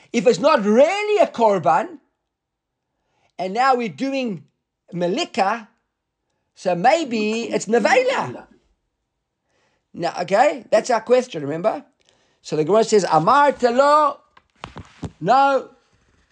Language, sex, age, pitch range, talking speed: English, male, 50-69, 185-245 Hz, 95 wpm